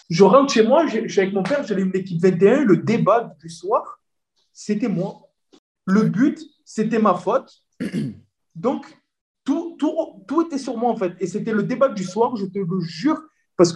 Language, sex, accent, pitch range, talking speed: French, male, French, 185-245 Hz, 190 wpm